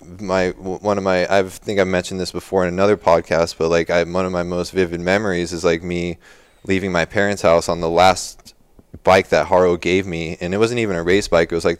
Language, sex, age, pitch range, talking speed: English, male, 20-39, 85-95 Hz, 250 wpm